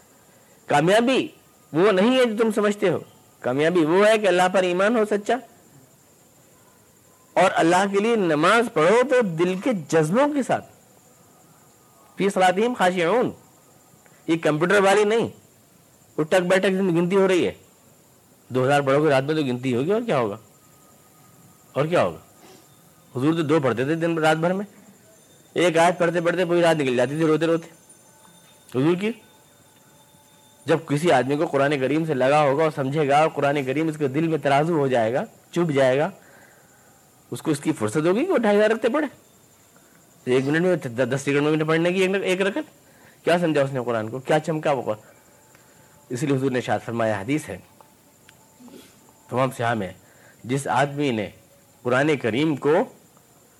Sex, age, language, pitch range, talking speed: male, 50-69, Urdu, 145-190 Hz, 170 wpm